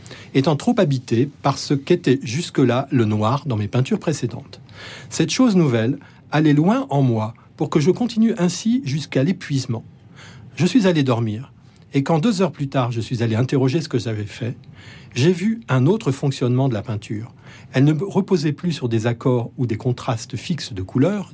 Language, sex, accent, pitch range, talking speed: French, male, French, 120-145 Hz, 185 wpm